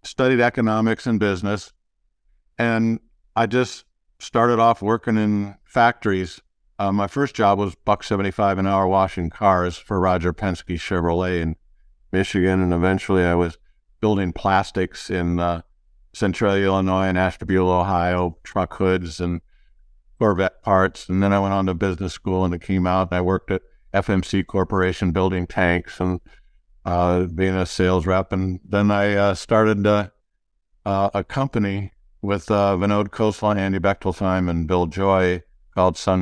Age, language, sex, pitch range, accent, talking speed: 60-79, English, male, 90-100 Hz, American, 155 wpm